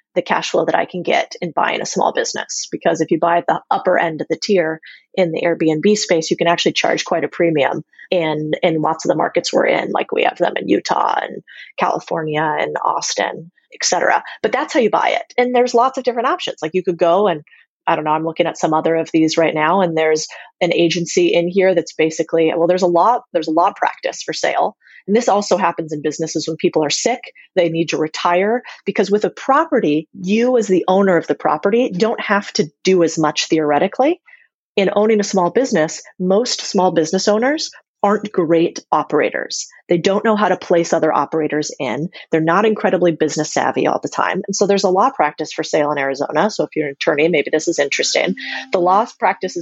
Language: English